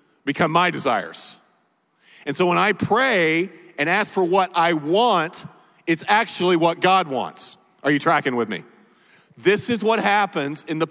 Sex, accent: male, American